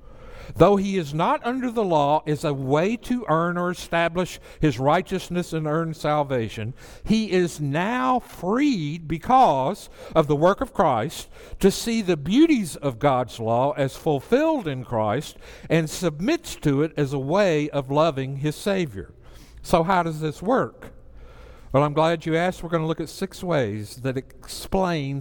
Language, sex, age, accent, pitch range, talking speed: English, male, 60-79, American, 140-185 Hz, 165 wpm